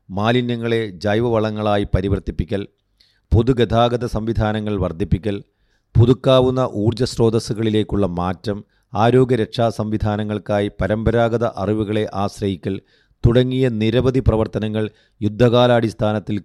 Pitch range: 100-120 Hz